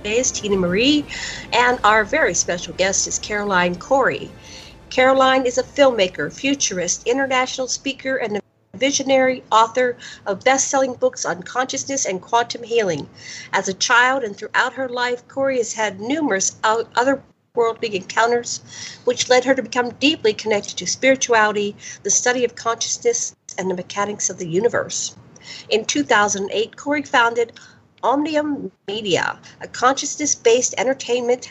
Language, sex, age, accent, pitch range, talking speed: English, female, 50-69, American, 205-270 Hz, 135 wpm